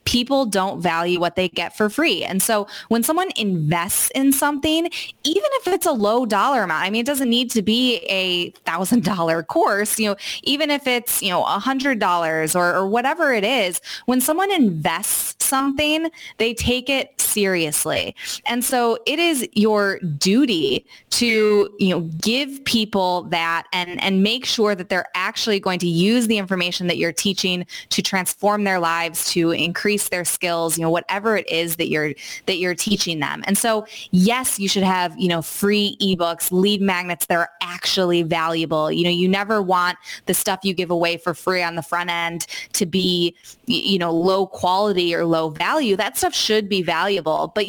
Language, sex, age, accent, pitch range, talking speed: English, female, 20-39, American, 175-235 Hz, 185 wpm